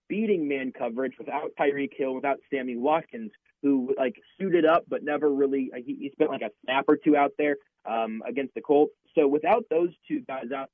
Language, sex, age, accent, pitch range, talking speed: English, male, 30-49, American, 130-175 Hz, 200 wpm